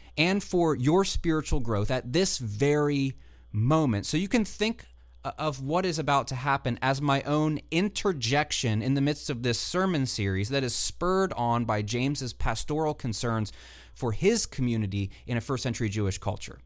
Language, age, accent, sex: English, 30-49, American, male